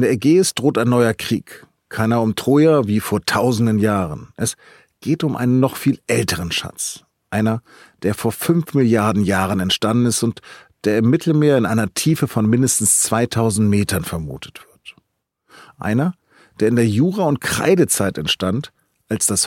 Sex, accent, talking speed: male, German, 165 wpm